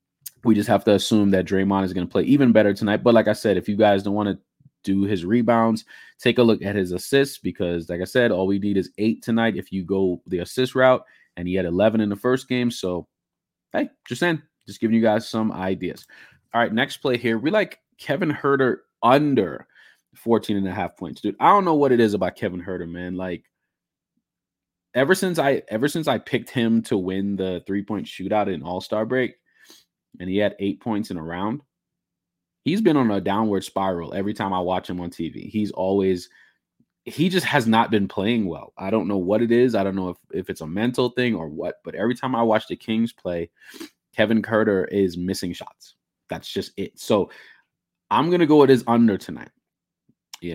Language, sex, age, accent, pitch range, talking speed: English, male, 20-39, American, 95-120 Hz, 215 wpm